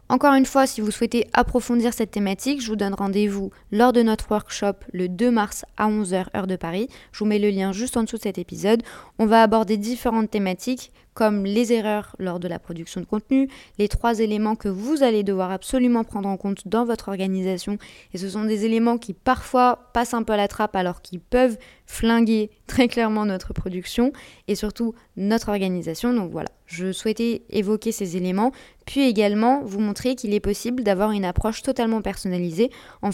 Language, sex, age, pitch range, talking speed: French, female, 20-39, 195-235 Hz, 195 wpm